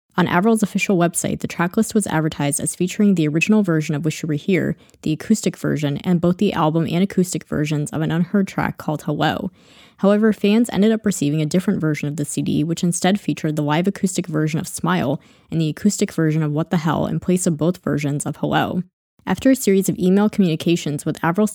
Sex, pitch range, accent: female, 155-190 Hz, American